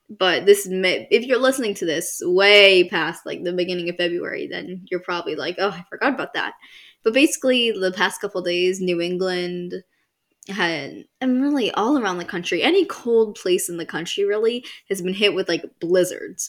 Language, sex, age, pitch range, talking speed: English, female, 10-29, 175-225 Hz, 195 wpm